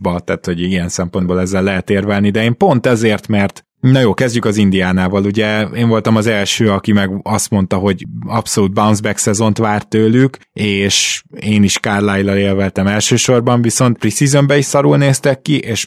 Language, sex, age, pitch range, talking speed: Hungarian, male, 20-39, 100-120 Hz, 180 wpm